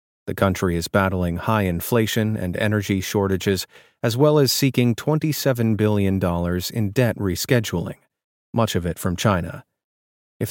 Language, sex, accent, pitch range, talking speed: English, male, American, 95-125 Hz, 135 wpm